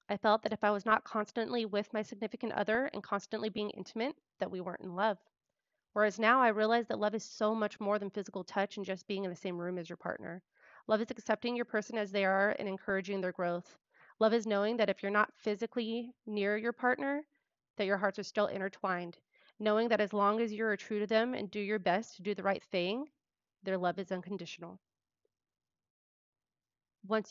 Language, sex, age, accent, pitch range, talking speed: English, female, 30-49, American, 190-220 Hz, 215 wpm